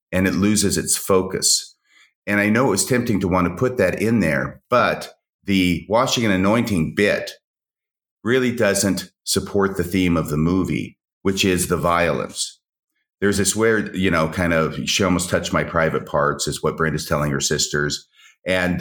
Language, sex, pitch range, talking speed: English, male, 80-100 Hz, 180 wpm